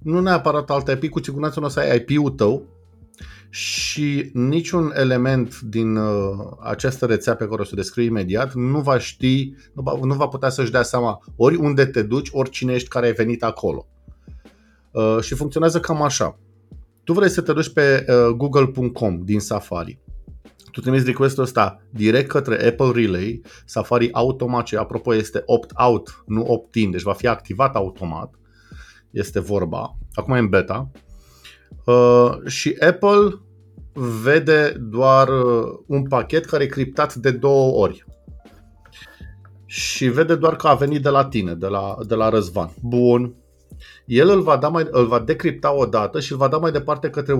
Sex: male